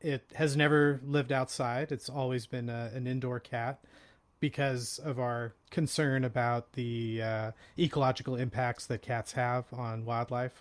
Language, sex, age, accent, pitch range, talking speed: English, male, 30-49, American, 120-150 Hz, 145 wpm